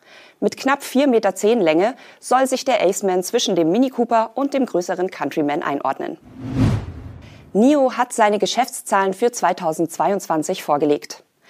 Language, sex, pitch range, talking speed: German, female, 175-230 Hz, 130 wpm